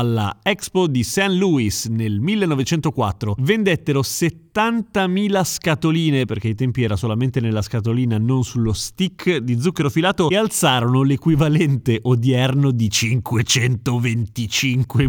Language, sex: Italian, male